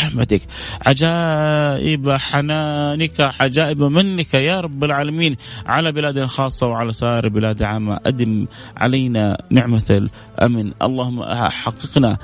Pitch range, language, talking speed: 100-130 Hz, English, 100 wpm